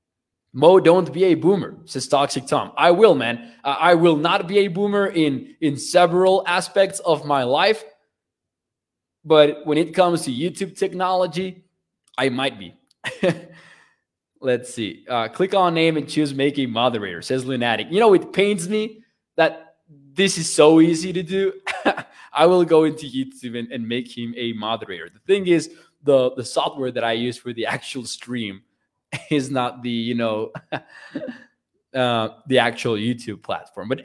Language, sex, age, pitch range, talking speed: English, male, 20-39, 125-180 Hz, 165 wpm